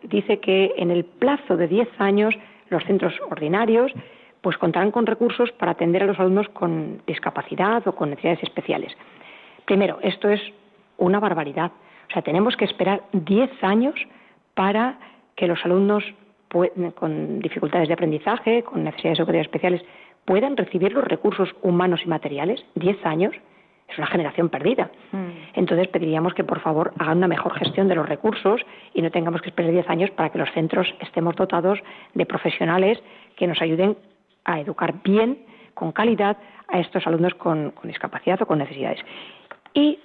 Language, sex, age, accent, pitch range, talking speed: Spanish, female, 40-59, Spanish, 175-220 Hz, 160 wpm